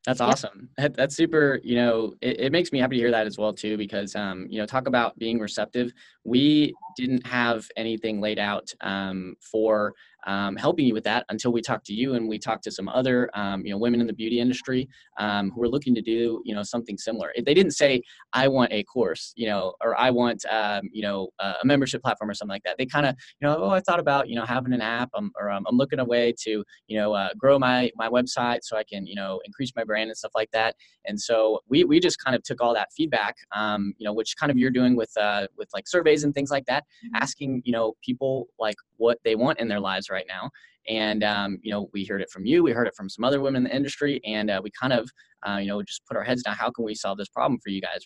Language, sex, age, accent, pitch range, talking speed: English, male, 10-29, American, 105-130 Hz, 250 wpm